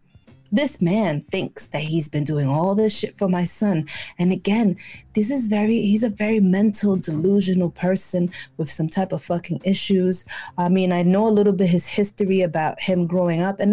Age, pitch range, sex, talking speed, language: 20-39, 165-215 Hz, female, 190 wpm, English